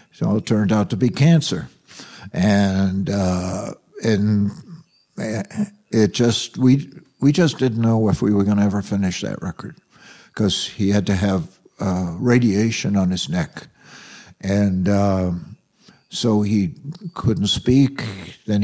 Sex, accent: male, American